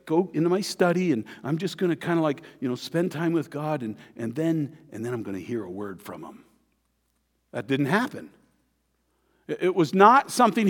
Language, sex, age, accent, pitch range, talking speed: English, male, 50-69, American, 155-215 Hz, 215 wpm